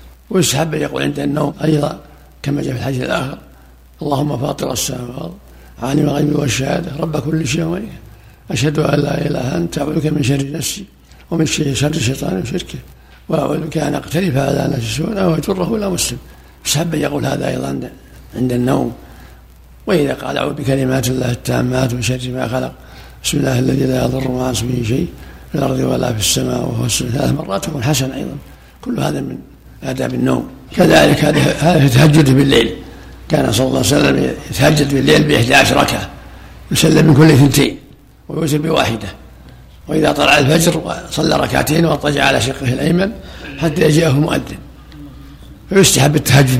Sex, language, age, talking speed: male, Arabic, 60-79, 150 wpm